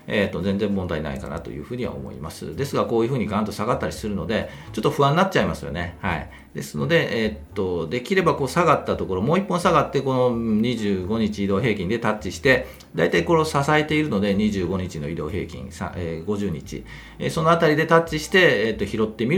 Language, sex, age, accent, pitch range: Japanese, male, 40-59, native, 90-155 Hz